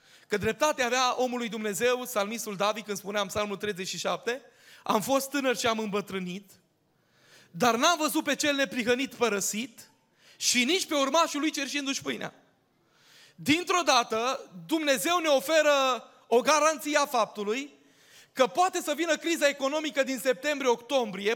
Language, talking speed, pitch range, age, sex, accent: Romanian, 135 wpm, 240-290 Hz, 20-39, male, native